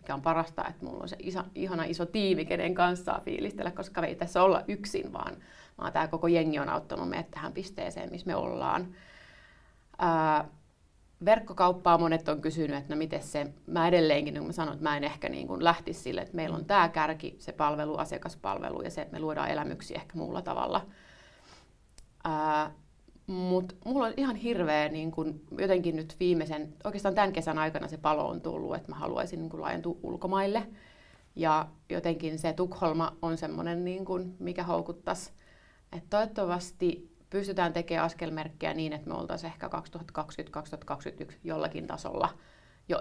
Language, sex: Finnish, female